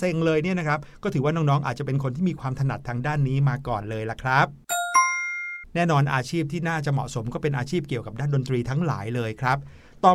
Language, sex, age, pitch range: Thai, male, 60-79, 135-170 Hz